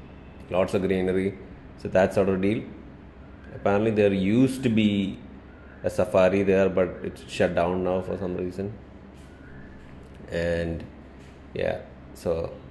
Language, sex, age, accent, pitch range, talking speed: English, male, 30-49, Indian, 70-95 Hz, 125 wpm